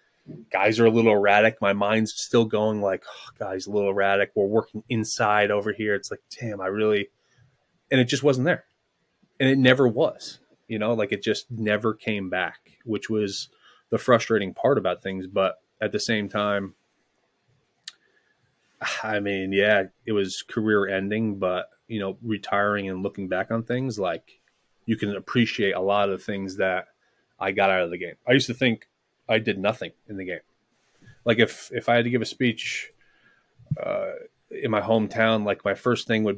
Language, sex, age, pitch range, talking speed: English, male, 30-49, 100-115 Hz, 185 wpm